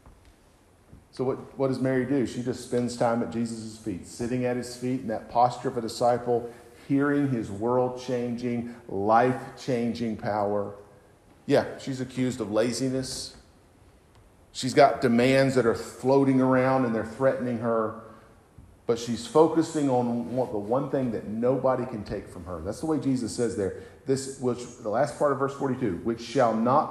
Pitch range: 120-160 Hz